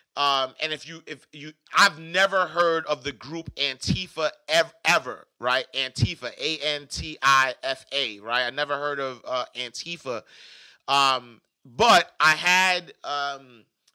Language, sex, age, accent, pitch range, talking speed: English, male, 30-49, American, 135-170 Hz, 150 wpm